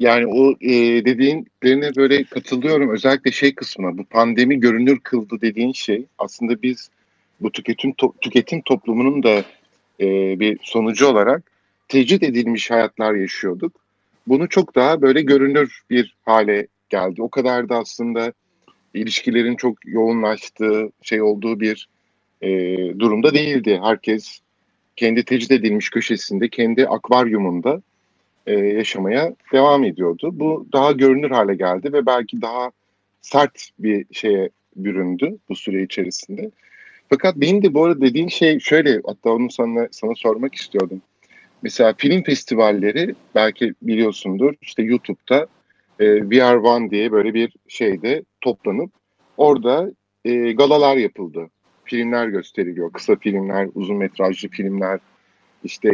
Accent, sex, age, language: native, male, 50-69, Turkish